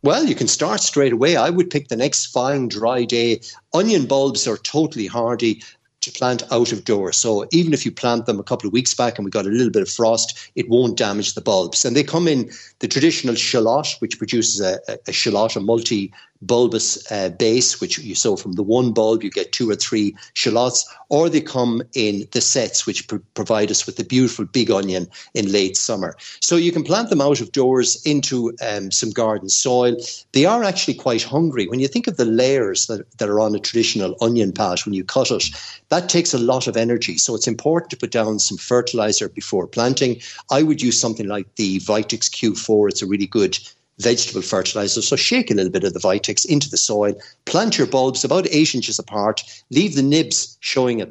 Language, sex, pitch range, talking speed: English, male, 110-135 Hz, 215 wpm